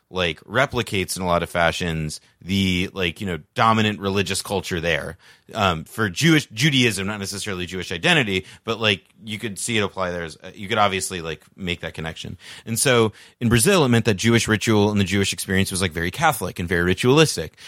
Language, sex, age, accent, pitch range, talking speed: English, male, 30-49, American, 95-120 Hz, 200 wpm